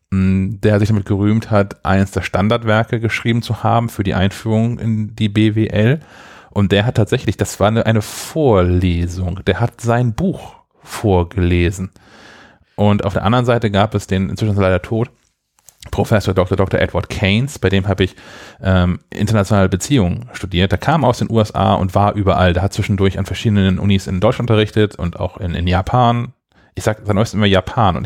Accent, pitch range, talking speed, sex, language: German, 95-115 Hz, 180 wpm, male, German